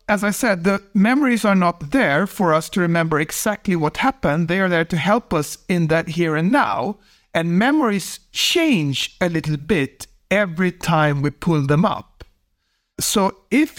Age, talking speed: 60-79, 175 wpm